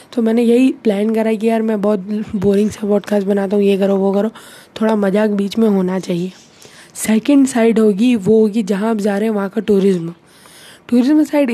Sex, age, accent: female, 20-39, native